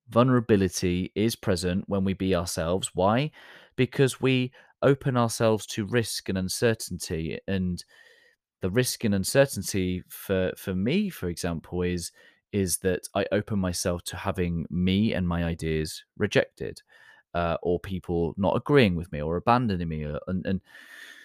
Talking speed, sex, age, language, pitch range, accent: 145 wpm, male, 30-49, English, 85-105 Hz, British